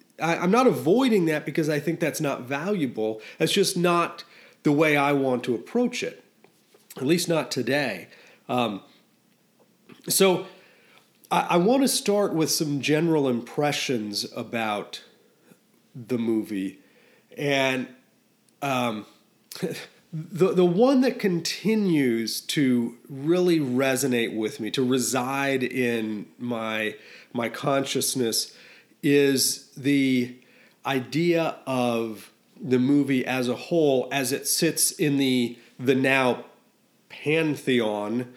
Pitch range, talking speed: 125-165 Hz, 115 wpm